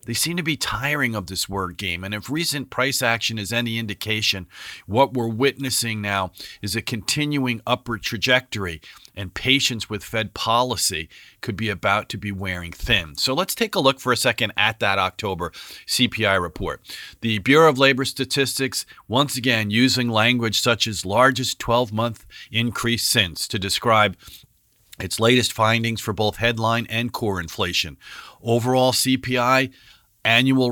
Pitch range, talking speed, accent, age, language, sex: 105-130 Hz, 155 wpm, American, 50-69, English, male